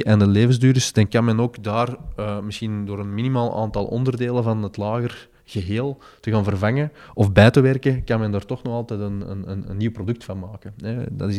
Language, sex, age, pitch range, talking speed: Dutch, male, 20-39, 105-120 Hz, 215 wpm